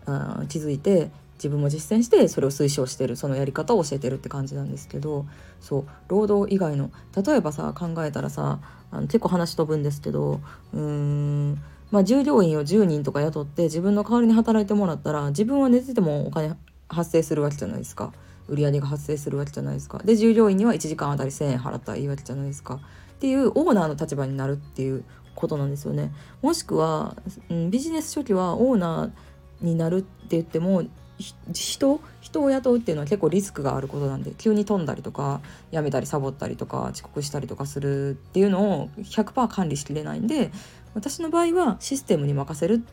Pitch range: 140-205 Hz